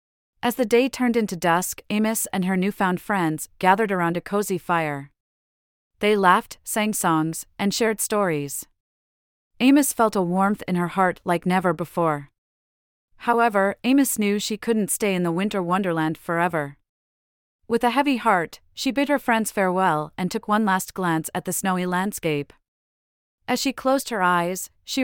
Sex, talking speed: female, 165 wpm